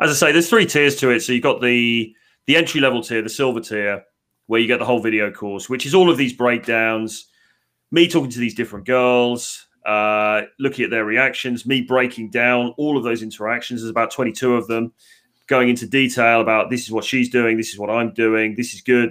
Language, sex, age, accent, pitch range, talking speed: English, male, 30-49, British, 110-125 Hz, 225 wpm